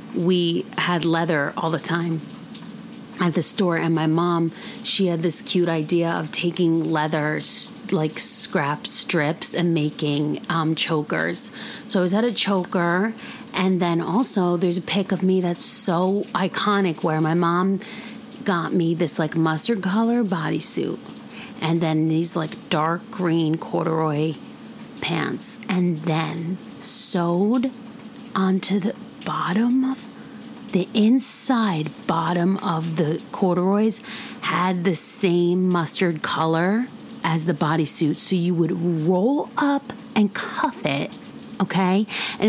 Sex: female